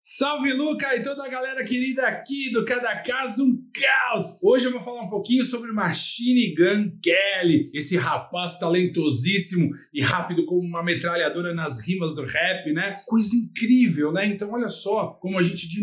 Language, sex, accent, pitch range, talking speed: Portuguese, male, Brazilian, 165-220 Hz, 175 wpm